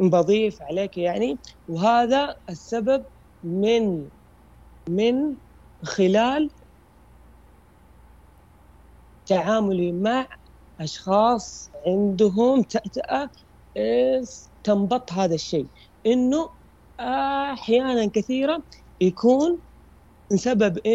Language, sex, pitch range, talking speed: Arabic, female, 195-255 Hz, 60 wpm